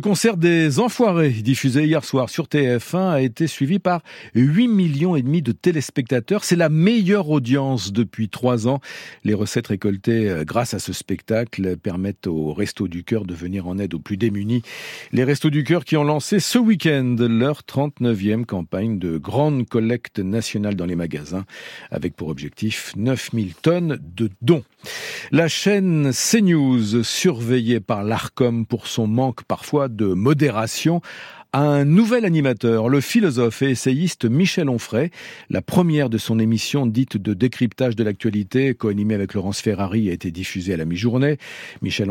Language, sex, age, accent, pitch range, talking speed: French, male, 50-69, French, 105-150 Hz, 160 wpm